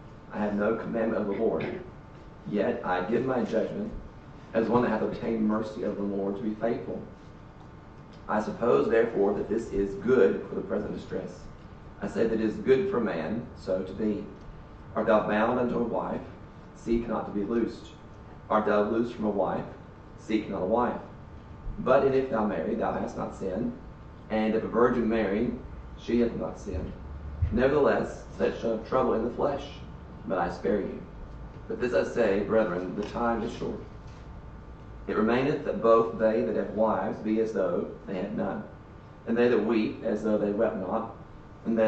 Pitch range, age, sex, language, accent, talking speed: 100-115 Hz, 40-59, male, English, American, 185 wpm